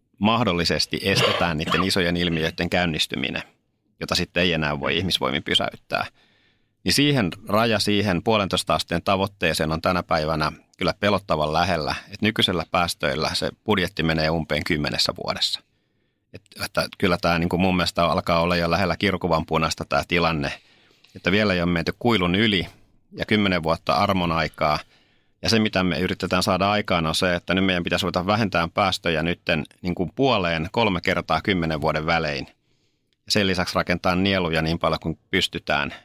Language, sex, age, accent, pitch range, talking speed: Finnish, male, 30-49, native, 80-100 Hz, 160 wpm